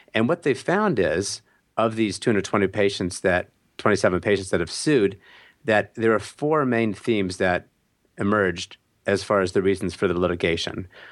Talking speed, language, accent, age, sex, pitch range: 165 wpm, English, American, 40-59, male, 95-120 Hz